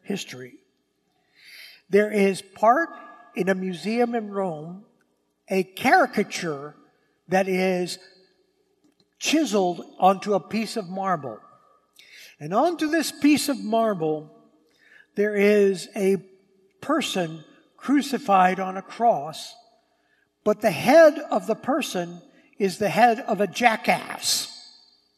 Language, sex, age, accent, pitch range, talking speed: English, male, 60-79, American, 180-235 Hz, 105 wpm